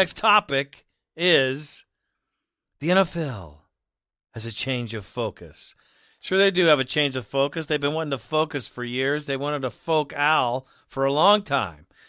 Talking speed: 170 wpm